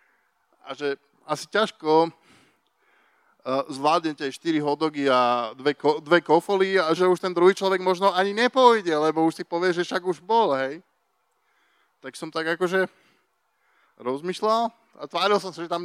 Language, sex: Slovak, male